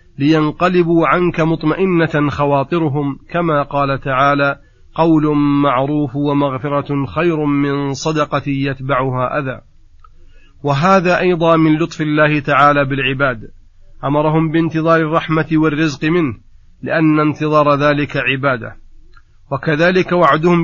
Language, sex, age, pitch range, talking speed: Arabic, male, 40-59, 140-155 Hz, 95 wpm